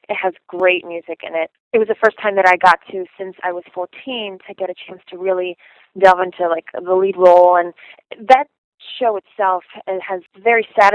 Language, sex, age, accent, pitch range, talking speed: English, female, 20-39, American, 180-210 Hz, 215 wpm